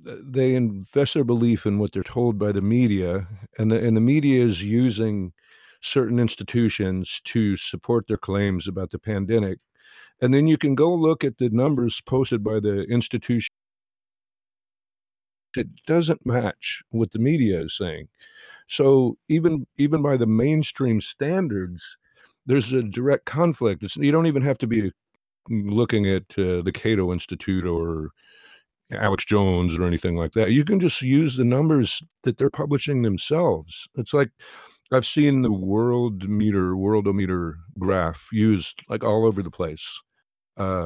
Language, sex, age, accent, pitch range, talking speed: English, male, 50-69, American, 95-130 Hz, 155 wpm